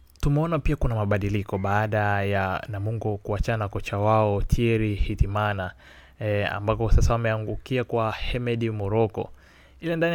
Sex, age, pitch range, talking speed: male, 20-39, 100-120 Hz, 125 wpm